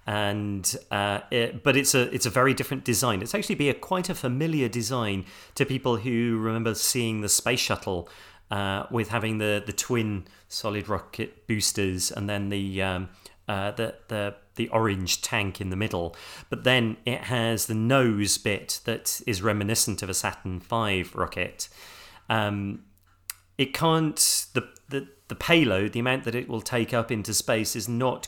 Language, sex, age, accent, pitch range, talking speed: English, male, 30-49, British, 95-120 Hz, 170 wpm